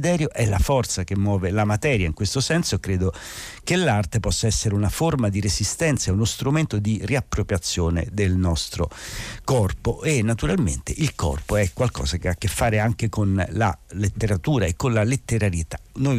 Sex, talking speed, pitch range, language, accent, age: male, 170 wpm, 95-125 Hz, Italian, native, 50-69